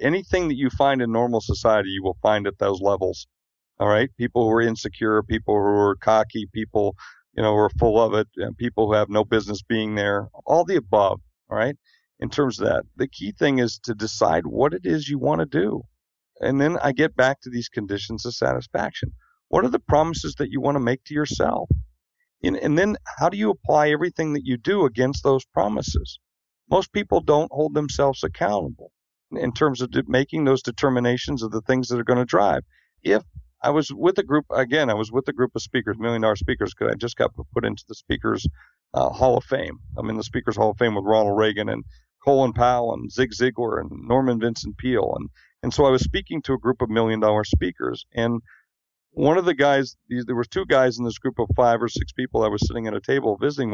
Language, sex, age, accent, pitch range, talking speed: English, male, 50-69, American, 105-135 Hz, 225 wpm